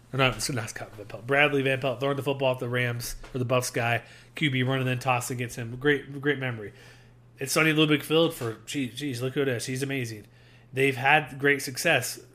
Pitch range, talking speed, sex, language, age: 125-150 Hz, 195 wpm, male, English, 30-49